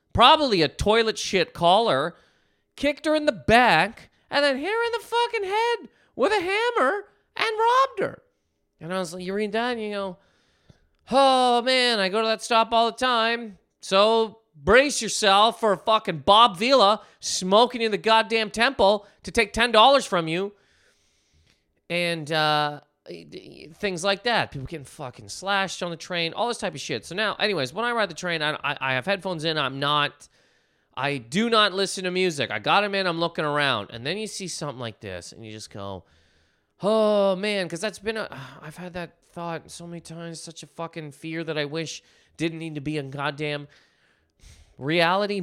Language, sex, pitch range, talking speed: English, male, 150-220 Hz, 195 wpm